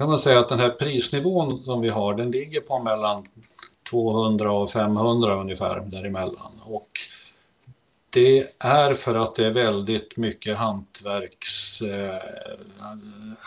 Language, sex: Swedish, male